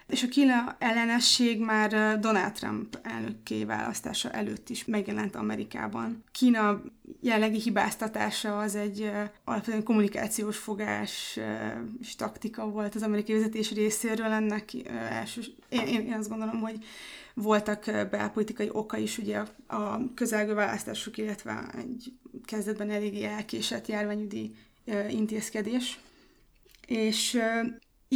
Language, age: Hungarian, 20-39